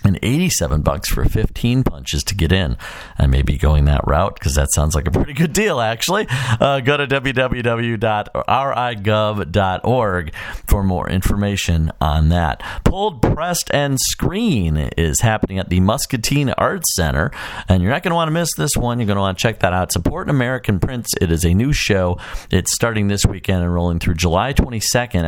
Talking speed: 190 wpm